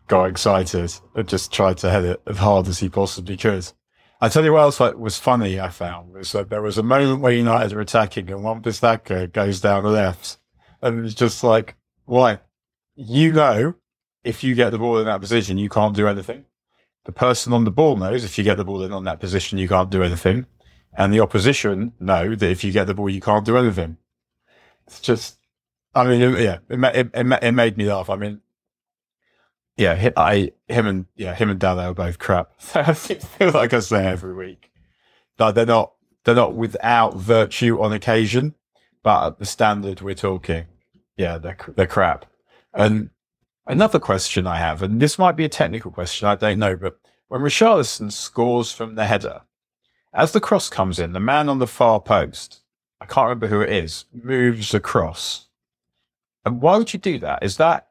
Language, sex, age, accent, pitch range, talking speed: English, male, 30-49, British, 95-120 Hz, 200 wpm